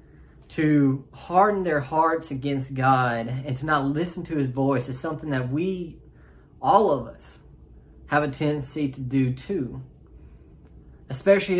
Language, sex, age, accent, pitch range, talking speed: English, male, 20-39, American, 125-155 Hz, 140 wpm